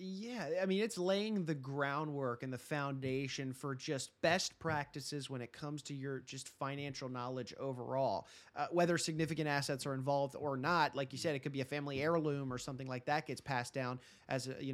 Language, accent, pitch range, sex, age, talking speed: English, American, 145-190 Hz, male, 30-49, 205 wpm